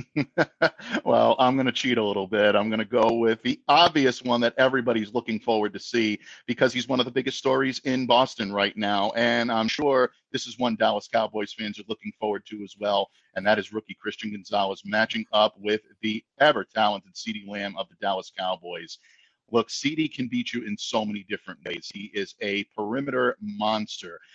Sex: male